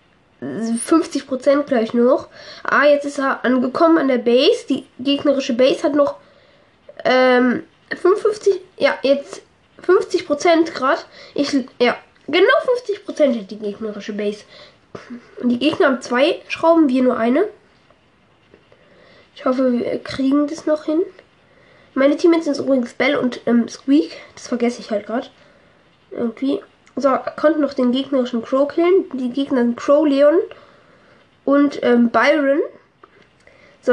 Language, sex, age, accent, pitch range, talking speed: German, female, 10-29, German, 250-315 Hz, 135 wpm